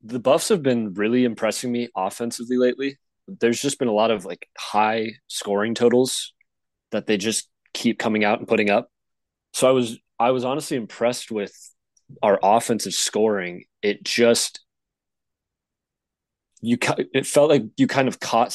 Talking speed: 160 wpm